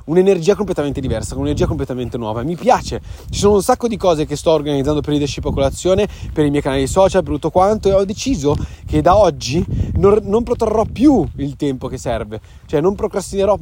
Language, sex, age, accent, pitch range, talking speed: Italian, male, 20-39, native, 135-185 Hz, 205 wpm